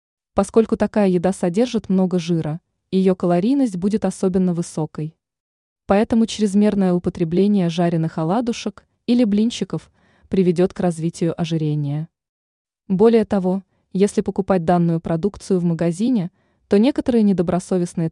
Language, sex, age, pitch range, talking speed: Russian, female, 20-39, 170-220 Hz, 110 wpm